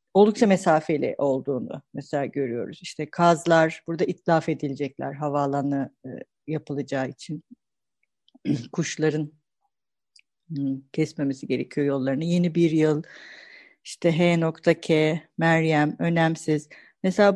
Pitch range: 165-250 Hz